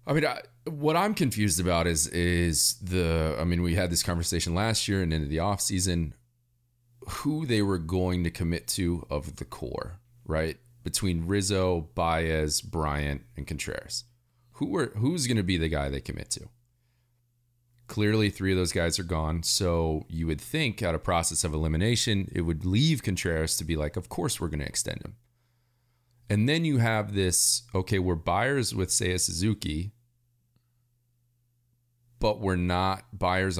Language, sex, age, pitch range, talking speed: English, male, 30-49, 85-120 Hz, 170 wpm